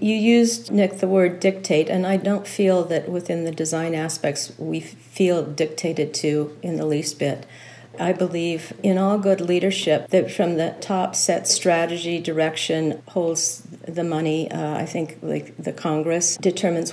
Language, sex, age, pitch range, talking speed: English, female, 50-69, 155-180 Hz, 160 wpm